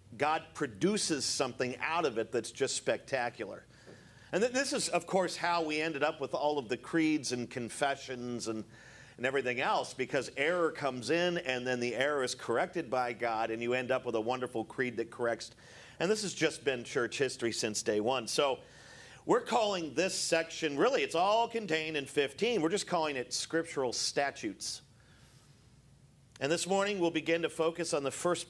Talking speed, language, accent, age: 185 wpm, English, American, 50-69